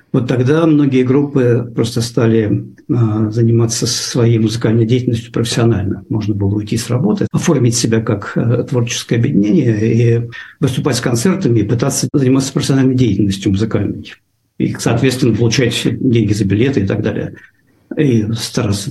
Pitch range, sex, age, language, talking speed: 110-150 Hz, male, 50-69, Russian, 140 wpm